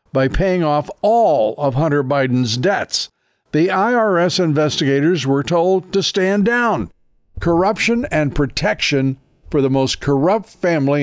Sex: male